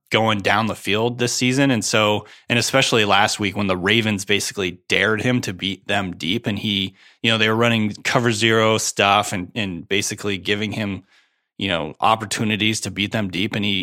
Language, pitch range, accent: English, 100-120 Hz, American